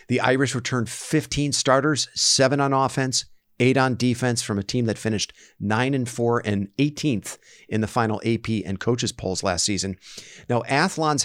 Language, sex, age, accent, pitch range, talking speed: English, male, 50-69, American, 105-130 Hz, 170 wpm